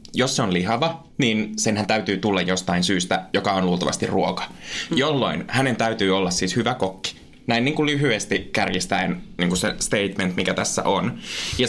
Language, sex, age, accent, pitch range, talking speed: Finnish, male, 20-39, native, 95-135 Hz, 175 wpm